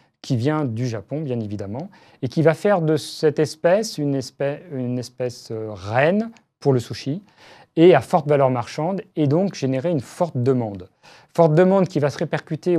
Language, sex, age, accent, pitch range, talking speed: French, male, 40-59, French, 125-160 Hz, 190 wpm